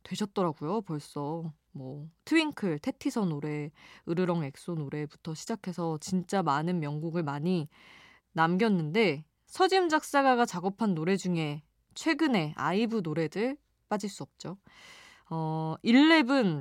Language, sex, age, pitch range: Korean, female, 20-39, 155-225 Hz